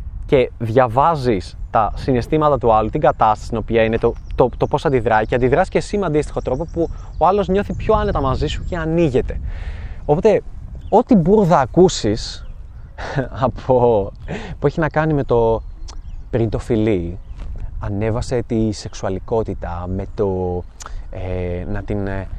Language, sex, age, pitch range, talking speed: Greek, male, 20-39, 95-145 Hz, 145 wpm